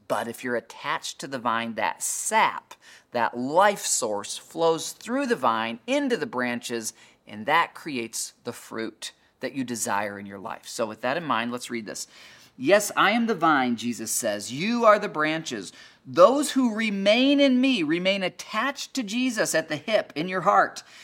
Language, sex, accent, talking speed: English, male, American, 185 wpm